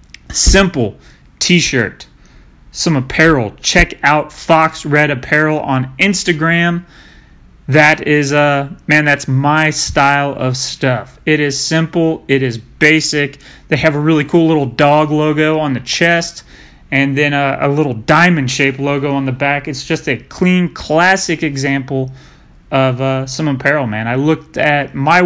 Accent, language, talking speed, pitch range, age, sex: American, English, 155 wpm, 135-155 Hz, 30-49, male